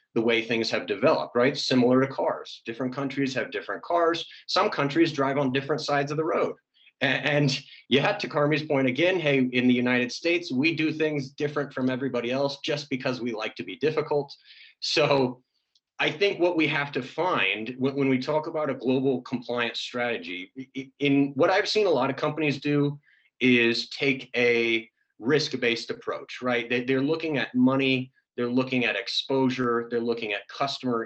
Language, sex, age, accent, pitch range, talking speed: English, male, 30-49, American, 120-145 Hz, 175 wpm